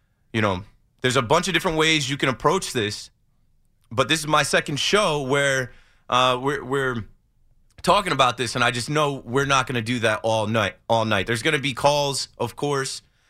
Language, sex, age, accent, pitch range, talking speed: English, male, 20-39, American, 115-150 Hz, 210 wpm